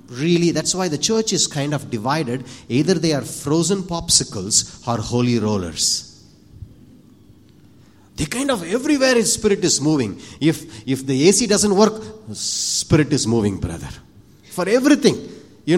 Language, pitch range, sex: English, 120-180 Hz, male